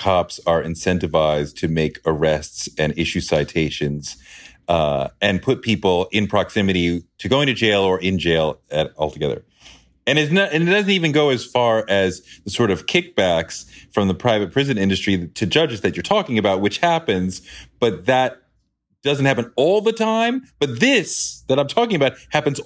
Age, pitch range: 40-59, 105-145 Hz